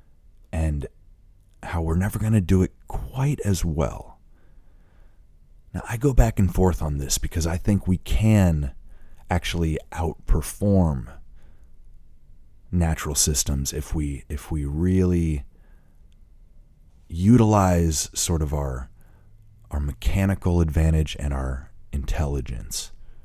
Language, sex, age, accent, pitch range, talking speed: English, male, 30-49, American, 75-95 Hz, 110 wpm